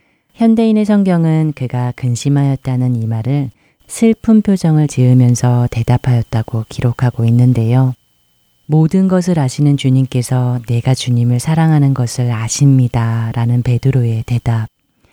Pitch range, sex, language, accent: 120-140 Hz, female, Korean, native